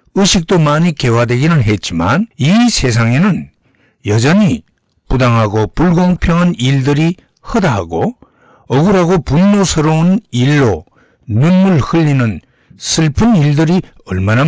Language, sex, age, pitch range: Korean, male, 60-79, 115-175 Hz